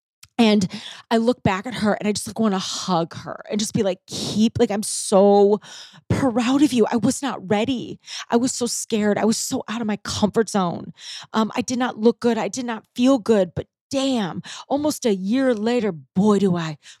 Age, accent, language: 30-49, American, English